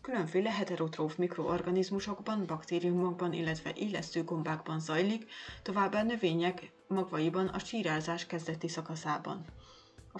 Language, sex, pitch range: Hungarian, female, 165-195 Hz